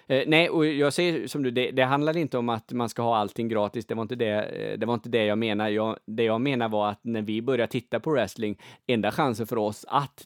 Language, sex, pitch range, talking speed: Swedish, male, 105-130 Hz, 255 wpm